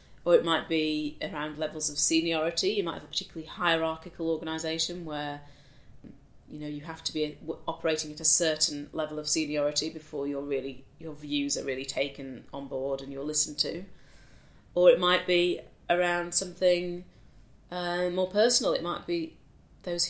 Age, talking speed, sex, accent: 30-49, 165 wpm, female, British